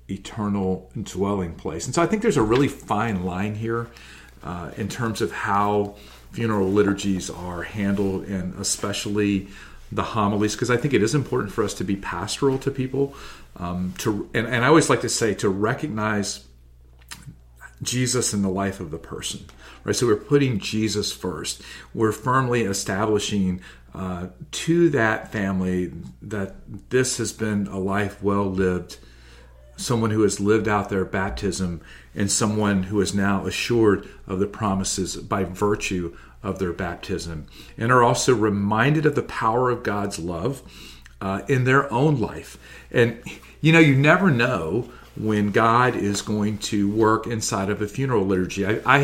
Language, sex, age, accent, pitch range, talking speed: English, male, 40-59, American, 95-115 Hz, 160 wpm